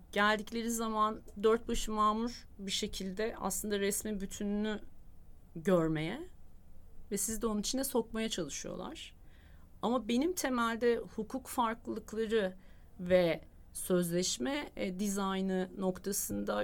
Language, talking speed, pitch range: Turkish, 100 wpm, 165-220 Hz